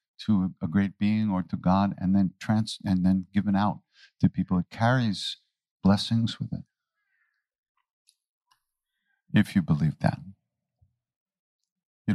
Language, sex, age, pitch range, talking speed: English, male, 50-69, 95-130 Hz, 130 wpm